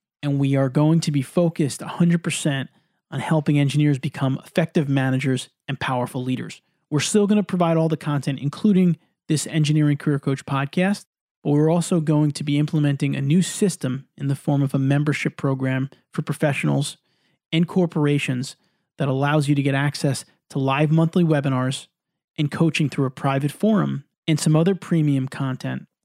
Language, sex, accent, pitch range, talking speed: English, male, American, 135-165 Hz, 170 wpm